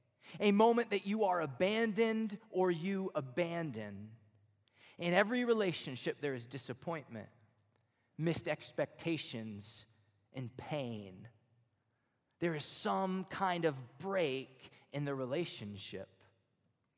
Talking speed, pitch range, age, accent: 100 wpm, 125-200 Hz, 20-39, American